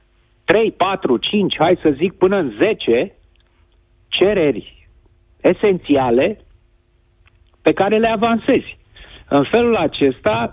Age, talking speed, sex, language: 50-69, 105 wpm, male, Romanian